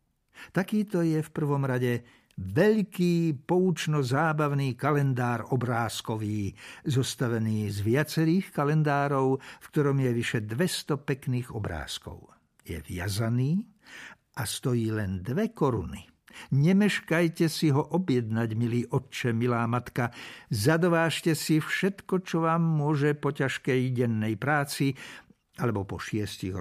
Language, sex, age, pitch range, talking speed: Slovak, male, 60-79, 120-160 Hz, 110 wpm